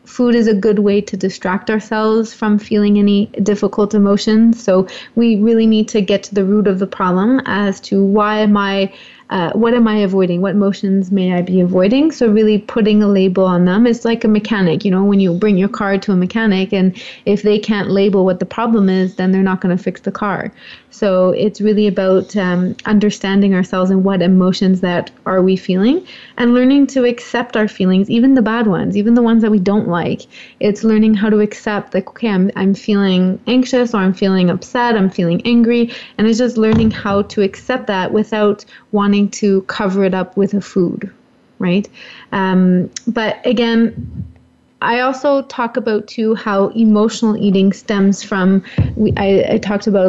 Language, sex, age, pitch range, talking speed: English, female, 30-49, 190-220 Hz, 195 wpm